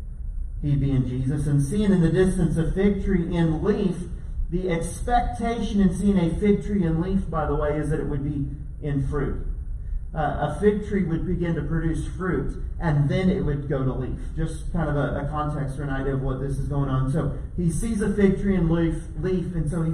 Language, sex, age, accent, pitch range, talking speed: English, male, 40-59, American, 145-180 Hz, 225 wpm